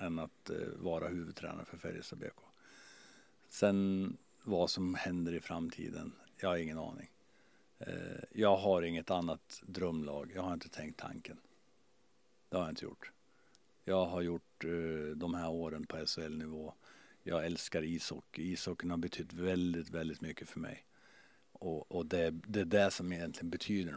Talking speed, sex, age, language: 160 wpm, male, 50-69, Swedish